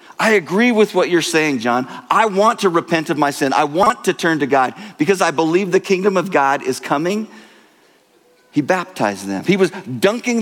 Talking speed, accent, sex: 200 wpm, American, male